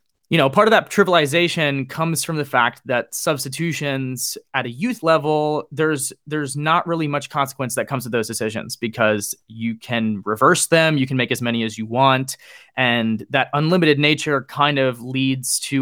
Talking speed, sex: 180 wpm, male